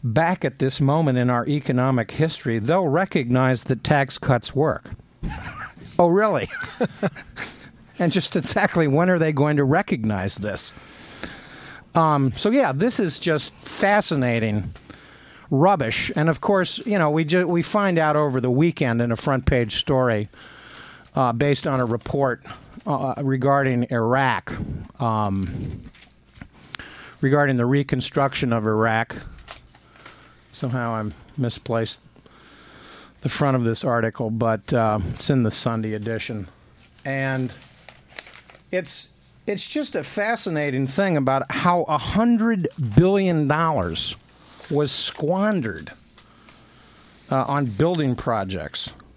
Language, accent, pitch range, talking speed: English, American, 115-155 Hz, 120 wpm